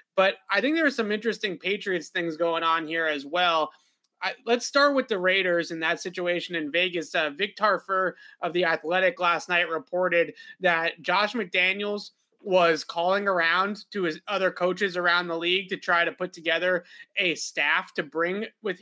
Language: English